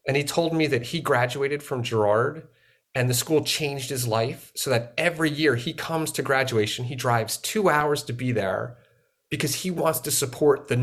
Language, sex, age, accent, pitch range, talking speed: English, male, 30-49, American, 125-165 Hz, 200 wpm